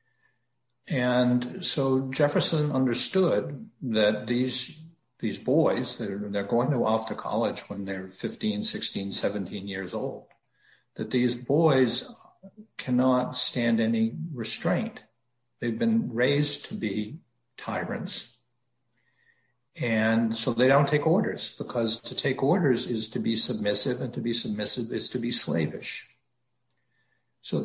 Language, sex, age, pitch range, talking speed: English, male, 60-79, 110-140 Hz, 125 wpm